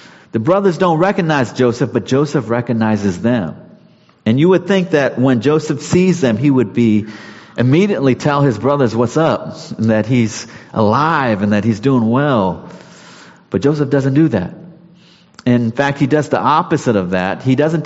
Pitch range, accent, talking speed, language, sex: 115-150 Hz, American, 170 wpm, English, male